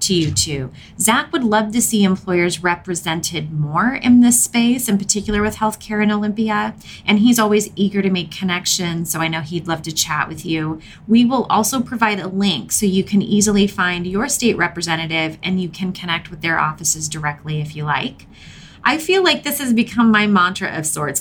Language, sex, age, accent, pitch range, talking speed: English, female, 30-49, American, 160-210 Hz, 200 wpm